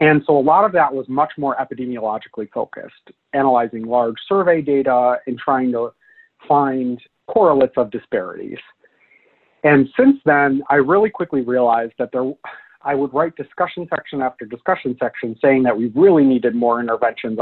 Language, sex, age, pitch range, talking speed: English, male, 40-59, 125-145 Hz, 160 wpm